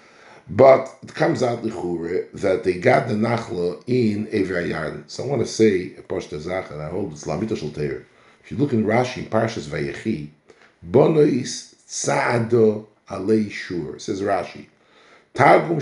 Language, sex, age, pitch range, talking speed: English, male, 60-79, 110-150 Hz, 145 wpm